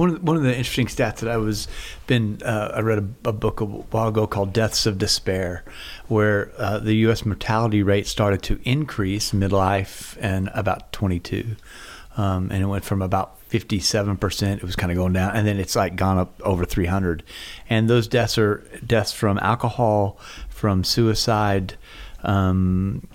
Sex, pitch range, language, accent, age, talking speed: male, 95-115 Hz, English, American, 40-59, 175 wpm